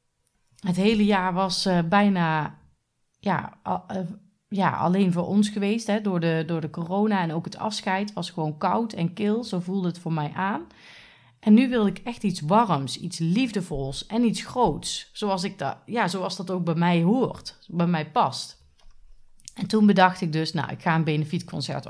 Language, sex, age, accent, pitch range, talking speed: Dutch, female, 30-49, Dutch, 165-210 Hz, 190 wpm